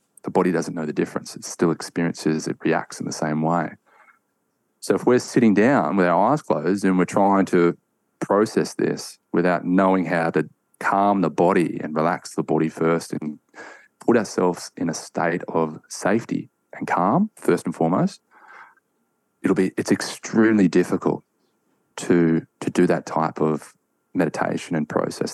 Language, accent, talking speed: English, Australian, 165 wpm